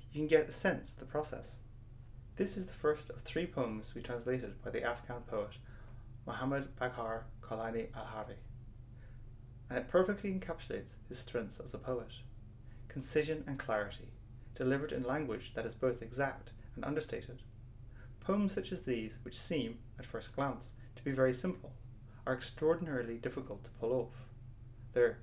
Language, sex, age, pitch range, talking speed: English, male, 30-49, 120-140 Hz, 155 wpm